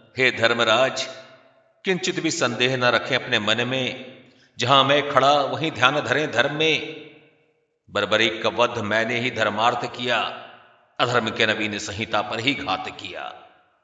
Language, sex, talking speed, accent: Hindi, male, 145 wpm, native